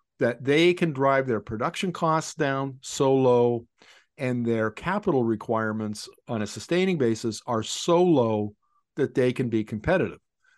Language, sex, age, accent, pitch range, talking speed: English, male, 50-69, American, 115-155 Hz, 145 wpm